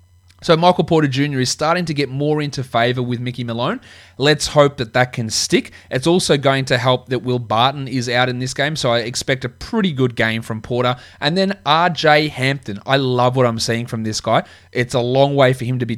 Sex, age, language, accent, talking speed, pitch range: male, 20-39, English, Australian, 235 wpm, 120-155 Hz